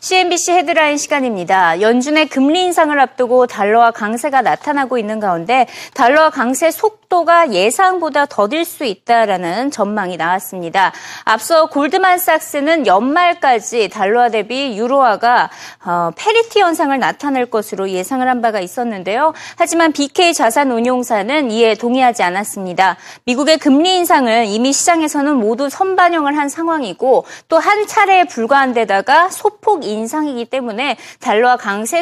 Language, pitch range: Korean, 225-325 Hz